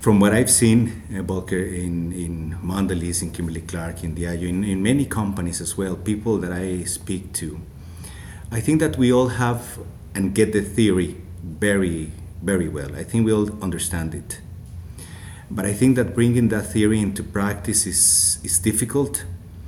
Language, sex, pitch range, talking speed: English, male, 90-110 Hz, 170 wpm